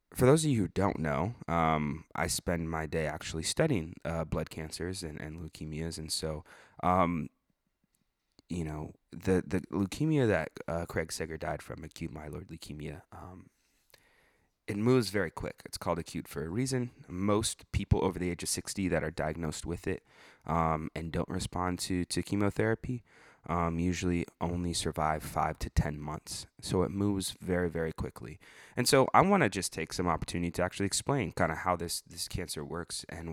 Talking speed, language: 180 wpm, English